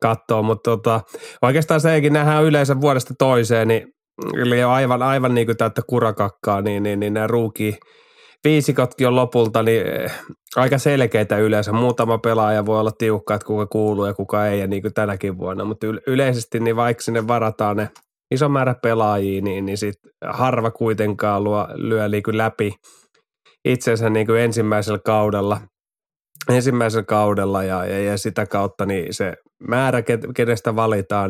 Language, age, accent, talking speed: Finnish, 20-39, native, 145 wpm